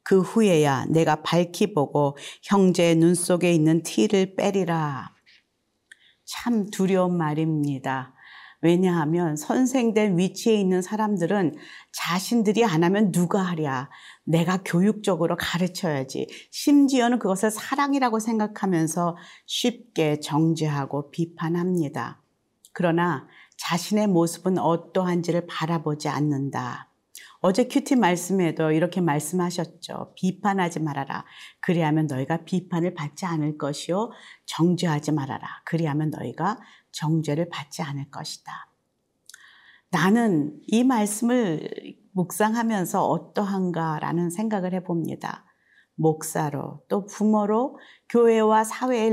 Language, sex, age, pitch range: Korean, female, 40-59, 155-205 Hz